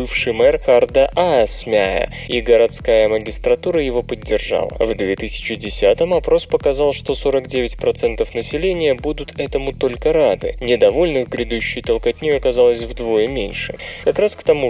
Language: Russian